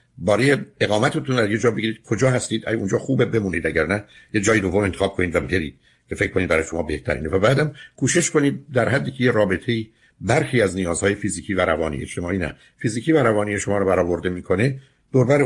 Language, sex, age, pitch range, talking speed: Persian, male, 60-79, 95-125 Hz, 205 wpm